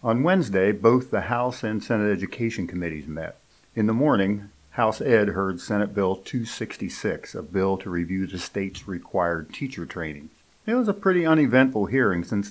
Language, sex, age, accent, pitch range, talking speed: English, male, 50-69, American, 90-120 Hz, 170 wpm